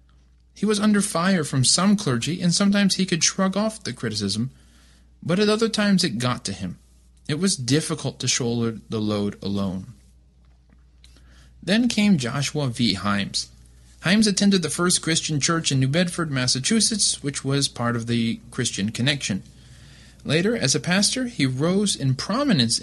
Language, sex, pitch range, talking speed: English, male, 110-155 Hz, 160 wpm